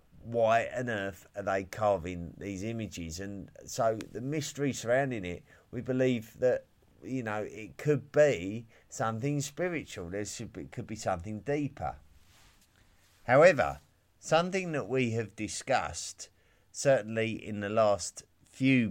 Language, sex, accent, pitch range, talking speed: English, male, British, 95-120 Hz, 135 wpm